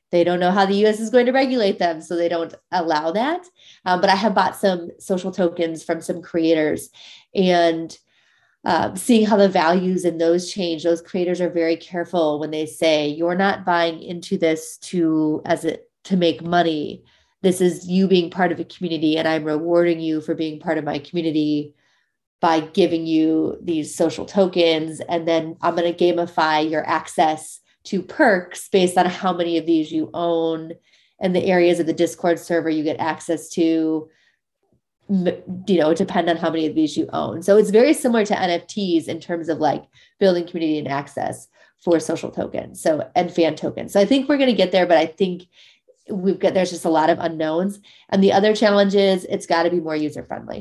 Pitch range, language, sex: 160-190 Hz, English, female